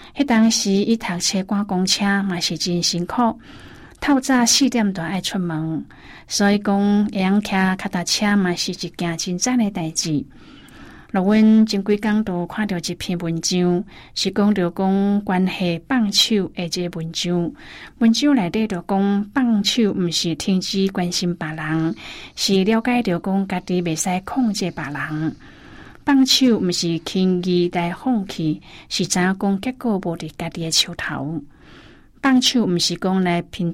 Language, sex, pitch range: Chinese, female, 175-205 Hz